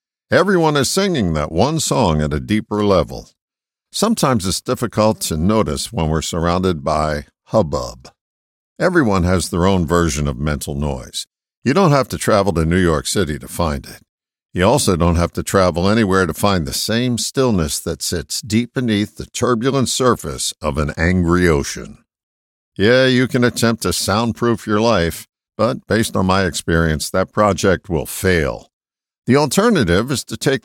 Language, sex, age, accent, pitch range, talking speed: English, male, 60-79, American, 85-125 Hz, 165 wpm